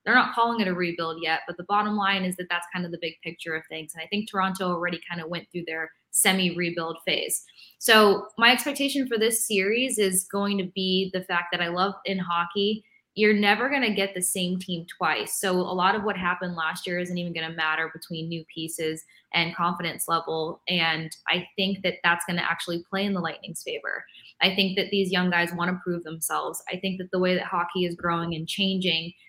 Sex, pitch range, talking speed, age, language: female, 165-190 Hz, 230 wpm, 20-39, English